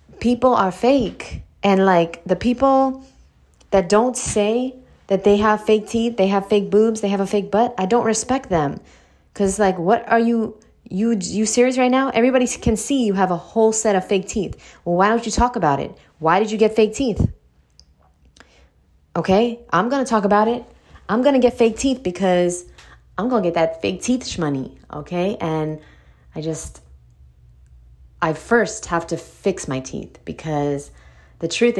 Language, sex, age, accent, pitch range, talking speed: English, female, 20-39, American, 130-205 Hz, 185 wpm